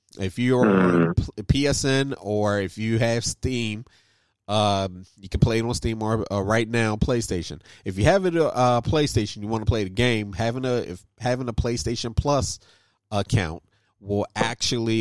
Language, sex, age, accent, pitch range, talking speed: English, male, 30-49, American, 100-120 Hz, 170 wpm